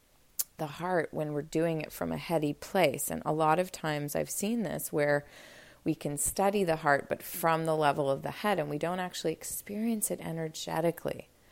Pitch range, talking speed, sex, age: 145-165 Hz, 200 wpm, female, 30-49